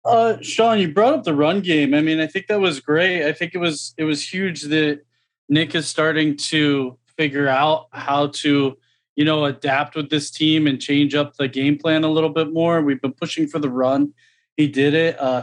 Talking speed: 220 wpm